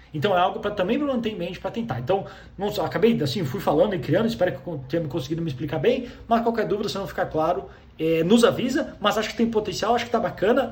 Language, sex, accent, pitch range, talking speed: Portuguese, male, Brazilian, 160-230 Hz, 265 wpm